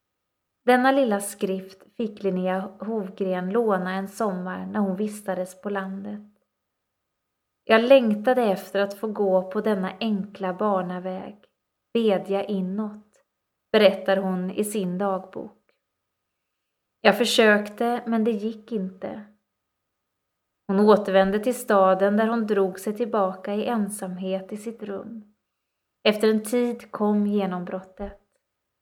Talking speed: 115 wpm